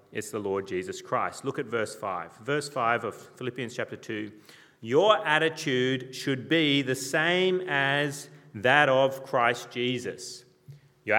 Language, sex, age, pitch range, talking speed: English, male, 30-49, 125-155 Hz, 145 wpm